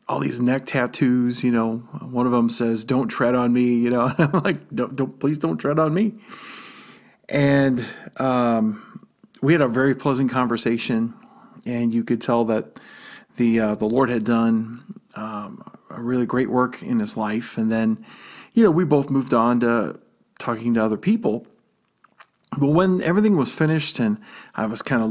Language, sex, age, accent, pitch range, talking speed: English, male, 40-59, American, 120-150 Hz, 180 wpm